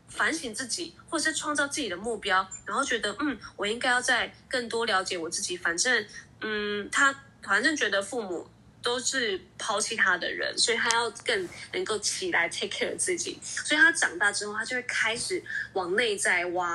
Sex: female